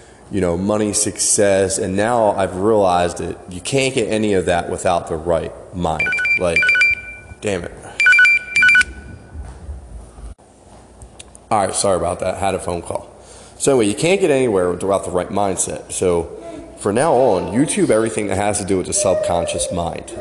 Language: English